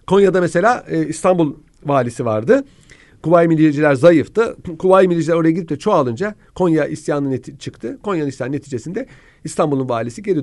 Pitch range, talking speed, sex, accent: 135-200 Hz, 145 wpm, male, native